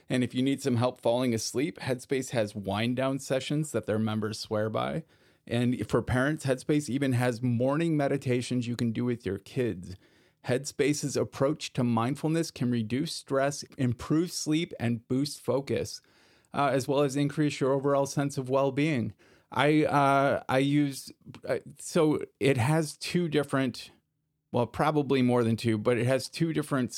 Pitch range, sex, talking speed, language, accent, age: 110-135 Hz, male, 160 wpm, English, American, 30-49